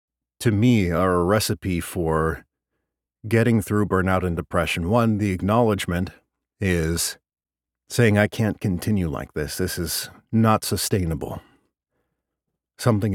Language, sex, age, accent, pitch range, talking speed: English, male, 50-69, American, 80-110 Hz, 120 wpm